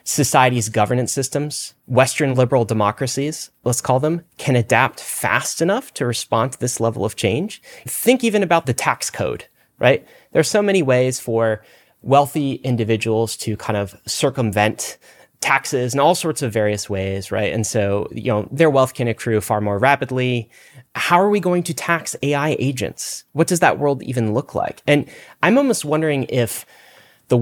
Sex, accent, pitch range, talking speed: male, American, 115-145 Hz, 170 wpm